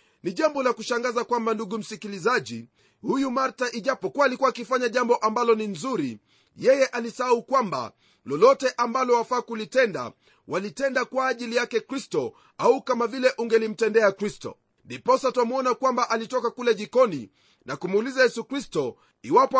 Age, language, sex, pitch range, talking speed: 40-59, Swahili, male, 225-255 Hz, 140 wpm